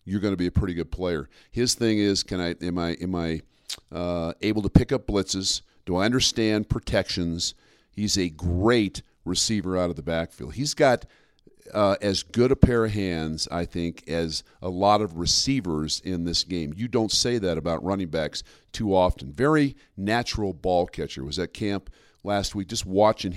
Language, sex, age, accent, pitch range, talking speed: English, male, 50-69, American, 85-105 Hz, 190 wpm